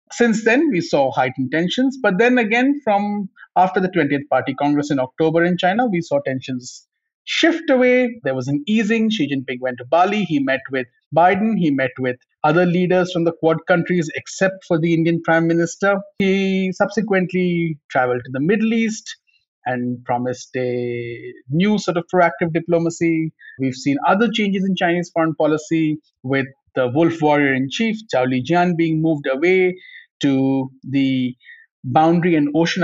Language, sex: English, male